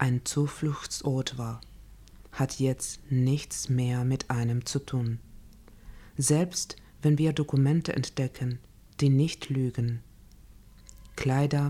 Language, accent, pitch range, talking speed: Spanish, German, 115-140 Hz, 105 wpm